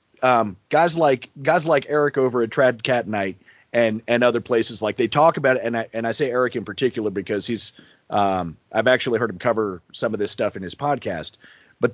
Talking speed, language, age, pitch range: 220 wpm, English, 30-49, 125-190 Hz